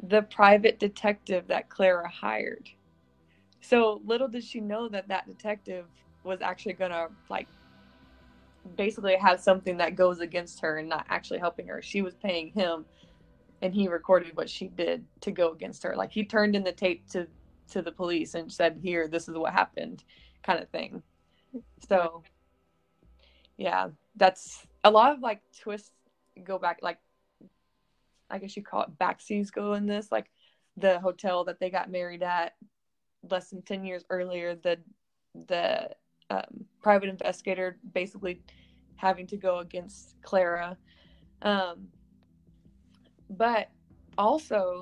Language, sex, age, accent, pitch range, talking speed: English, female, 20-39, American, 170-205 Hz, 150 wpm